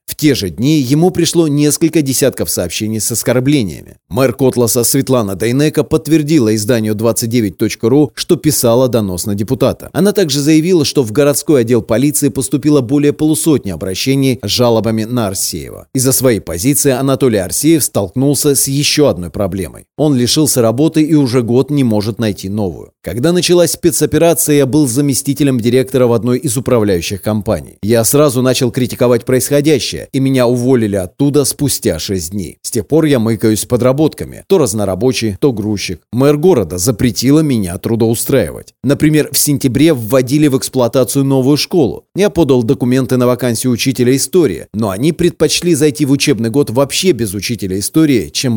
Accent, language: native, Russian